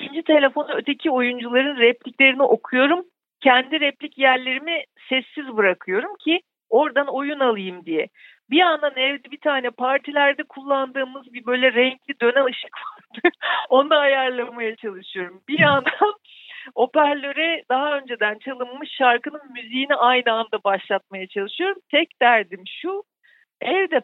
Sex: female